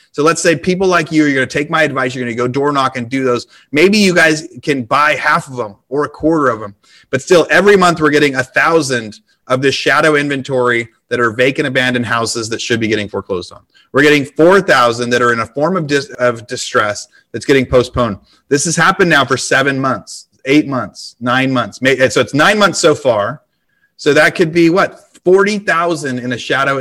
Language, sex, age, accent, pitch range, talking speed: English, male, 30-49, American, 120-150 Hz, 220 wpm